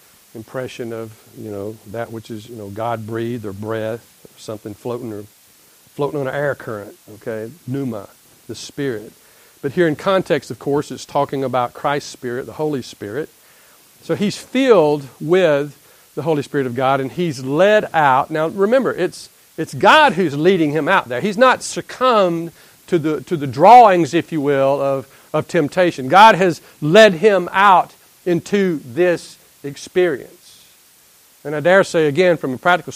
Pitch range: 135-180 Hz